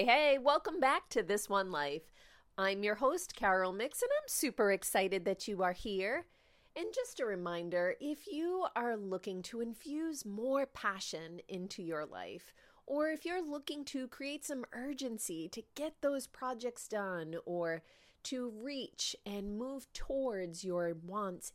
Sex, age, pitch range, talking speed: female, 30-49, 180-280 Hz, 155 wpm